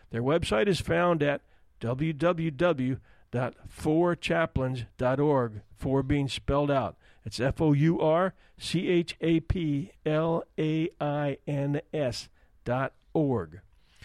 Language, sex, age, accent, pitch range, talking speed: English, male, 50-69, American, 135-185 Hz, 100 wpm